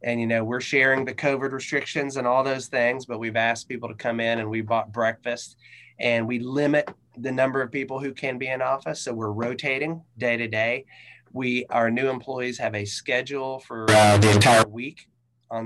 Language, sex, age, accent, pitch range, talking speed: English, male, 30-49, American, 110-125 Hz, 205 wpm